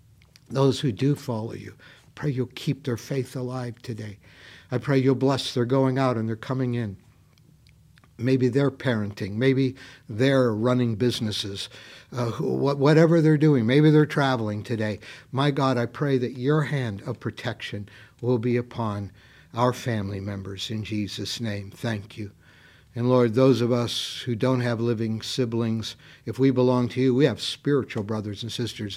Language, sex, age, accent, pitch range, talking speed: English, male, 60-79, American, 110-135 Hz, 165 wpm